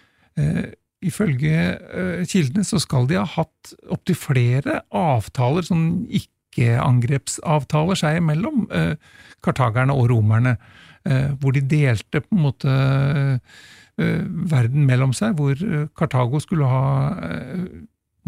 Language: English